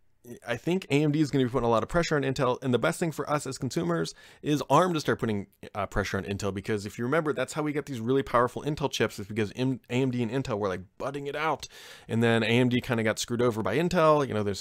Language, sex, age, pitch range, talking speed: English, male, 30-49, 100-130 Hz, 275 wpm